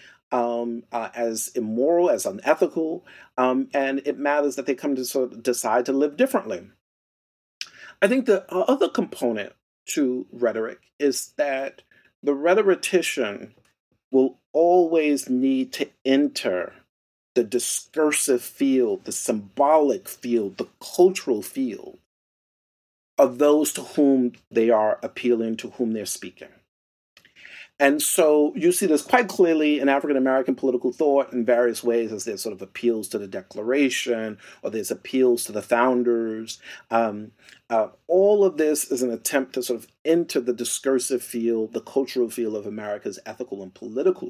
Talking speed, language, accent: 145 wpm, English, American